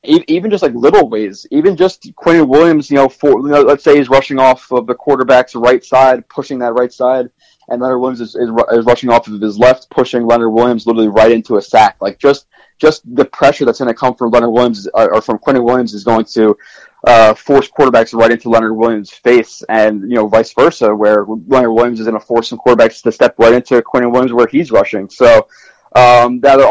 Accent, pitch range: American, 110-125 Hz